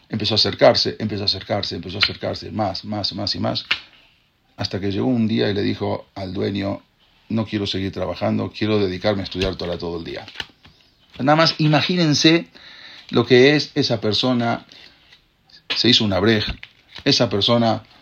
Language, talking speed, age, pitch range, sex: English, 170 wpm, 50-69, 105-140 Hz, male